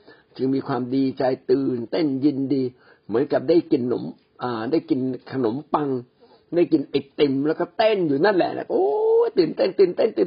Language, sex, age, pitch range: Thai, male, 60-79, 130-175 Hz